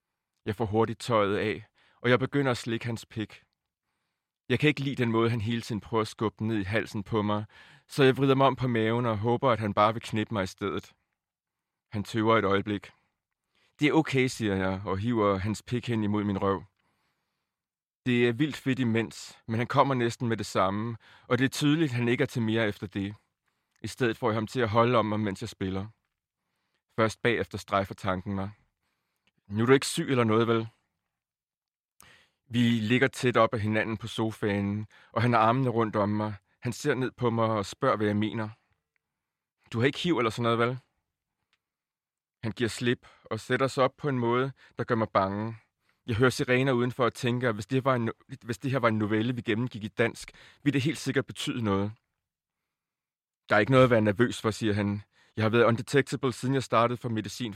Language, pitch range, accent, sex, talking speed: Danish, 105-125 Hz, native, male, 215 wpm